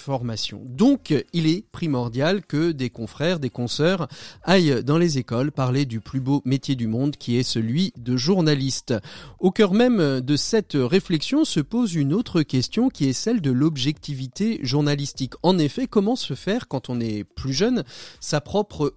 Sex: male